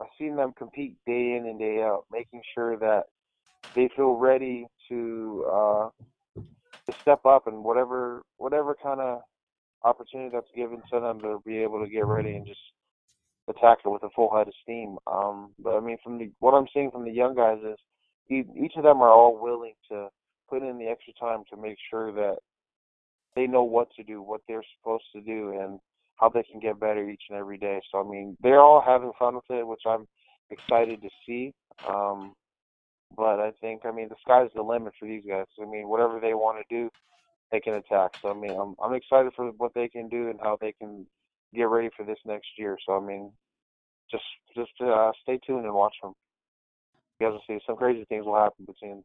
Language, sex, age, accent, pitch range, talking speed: English, male, 20-39, American, 105-120 Hz, 215 wpm